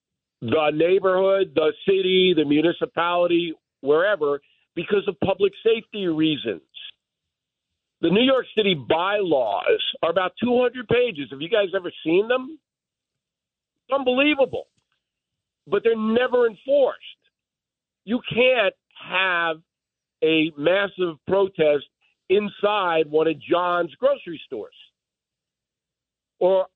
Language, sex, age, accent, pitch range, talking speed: English, male, 50-69, American, 165-240 Hz, 105 wpm